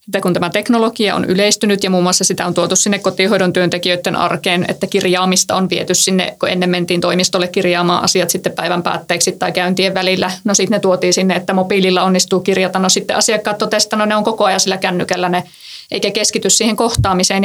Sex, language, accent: female, Finnish, native